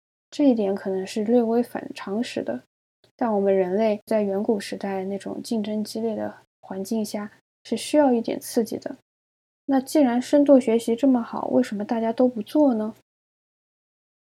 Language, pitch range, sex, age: Chinese, 205-250 Hz, female, 10-29